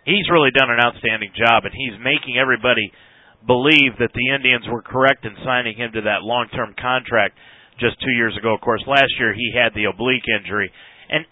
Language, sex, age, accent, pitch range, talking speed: English, male, 40-59, American, 115-160 Hz, 195 wpm